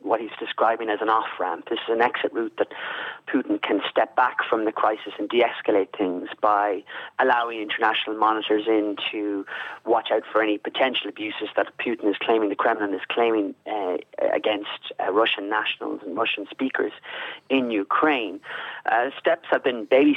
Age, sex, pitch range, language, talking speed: 30-49, male, 105-120 Hz, English, 170 wpm